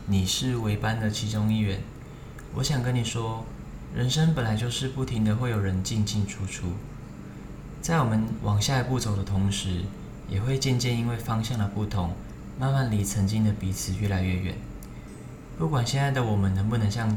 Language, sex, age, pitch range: Chinese, male, 20-39, 100-130 Hz